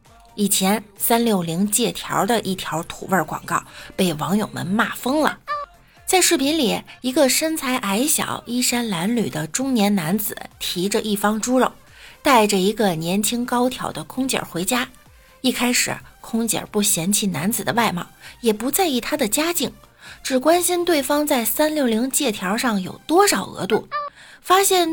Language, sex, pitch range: Chinese, female, 195-275 Hz